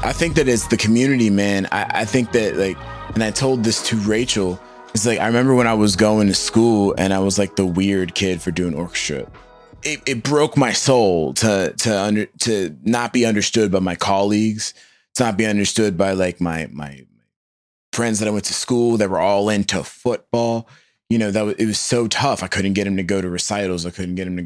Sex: male